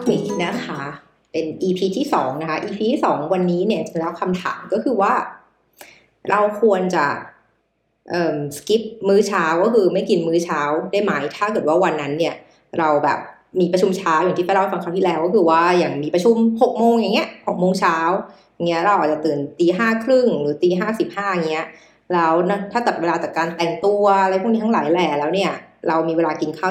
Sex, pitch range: female, 165-200 Hz